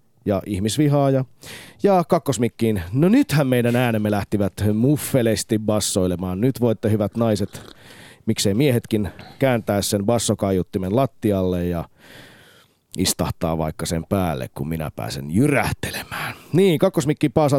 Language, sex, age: Finnish, male, 30-49